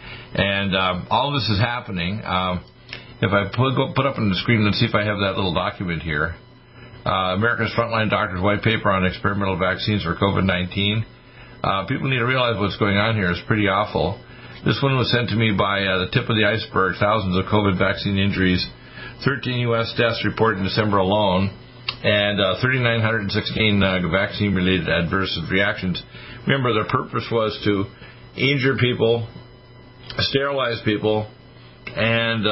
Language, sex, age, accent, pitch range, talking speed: English, male, 50-69, American, 95-115 Hz, 165 wpm